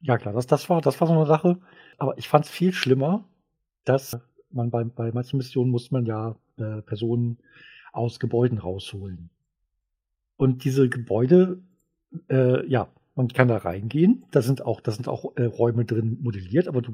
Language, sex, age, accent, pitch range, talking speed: German, male, 50-69, German, 115-150 Hz, 180 wpm